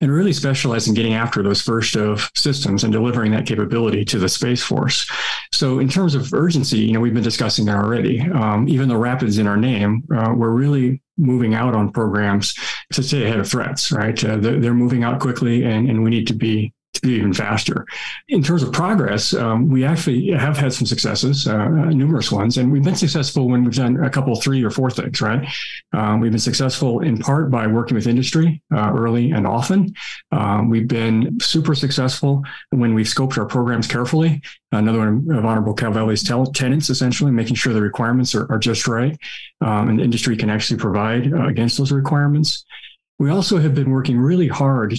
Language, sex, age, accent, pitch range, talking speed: English, male, 40-59, American, 110-140 Hz, 205 wpm